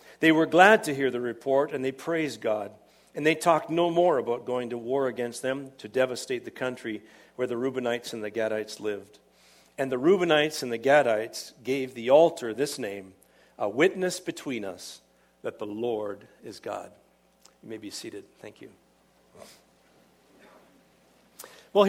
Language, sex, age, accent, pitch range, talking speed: English, male, 50-69, American, 125-185 Hz, 165 wpm